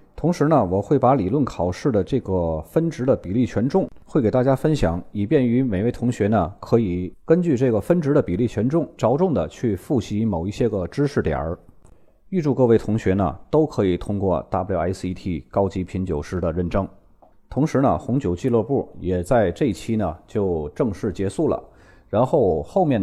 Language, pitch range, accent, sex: Chinese, 90-130 Hz, native, male